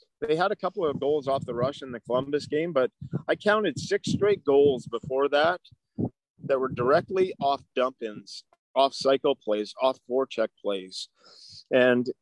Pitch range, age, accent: 125-150 Hz, 40-59, American